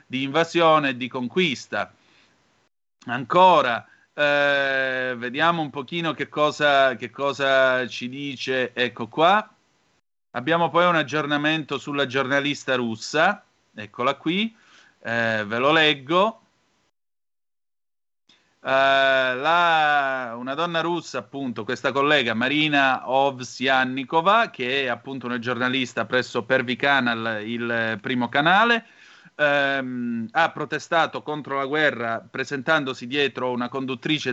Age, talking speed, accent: 40-59, 110 wpm, native